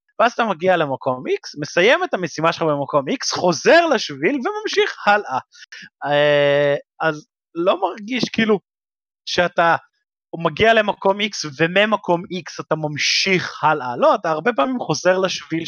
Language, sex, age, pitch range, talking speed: Hebrew, male, 20-39, 140-190 Hz, 130 wpm